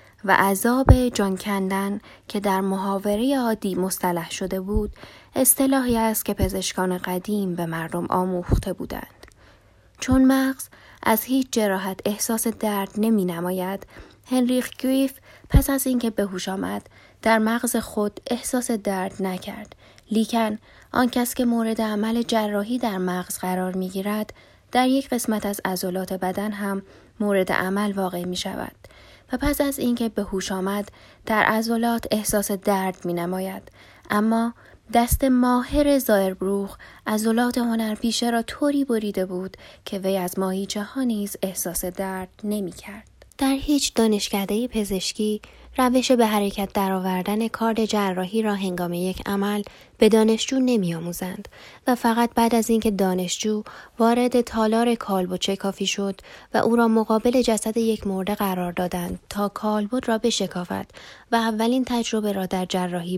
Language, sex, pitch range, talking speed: Persian, female, 190-230 Hz, 135 wpm